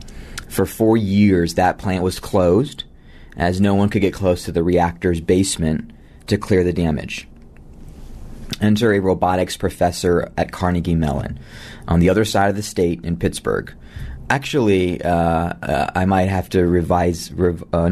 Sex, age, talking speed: male, 30-49, 155 wpm